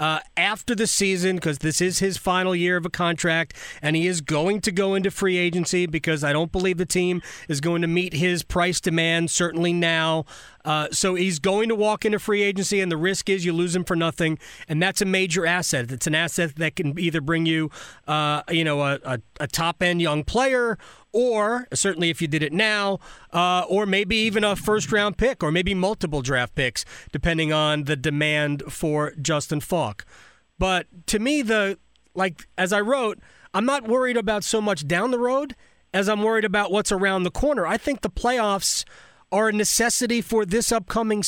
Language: English